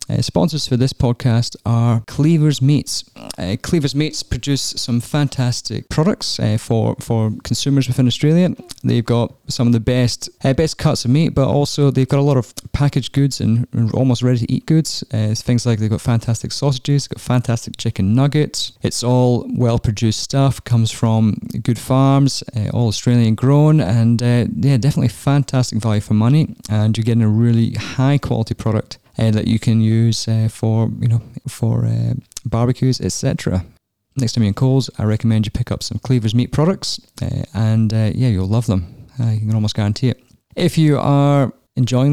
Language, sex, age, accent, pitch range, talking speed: English, male, 20-39, British, 110-135 Hz, 185 wpm